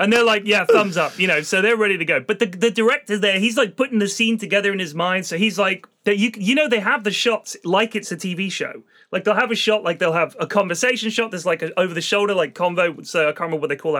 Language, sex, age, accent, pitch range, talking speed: English, male, 30-49, British, 180-235 Hz, 290 wpm